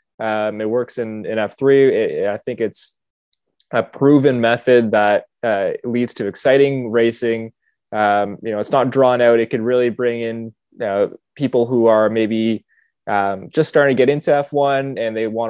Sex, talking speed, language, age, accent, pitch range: male, 180 wpm, English, 20-39, American, 110-125 Hz